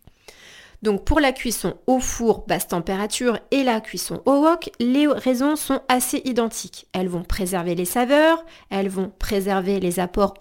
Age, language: 30-49, French